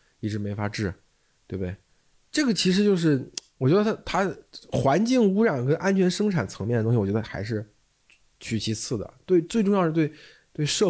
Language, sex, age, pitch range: Chinese, male, 20-39, 100-145 Hz